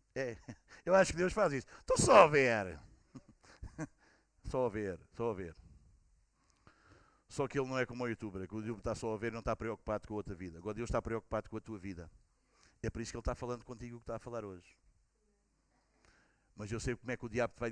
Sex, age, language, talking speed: male, 50-69, Portuguese, 245 wpm